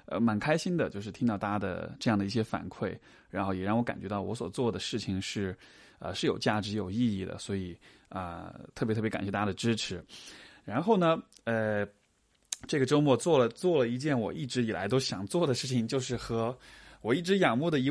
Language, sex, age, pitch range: Chinese, male, 20-39, 105-135 Hz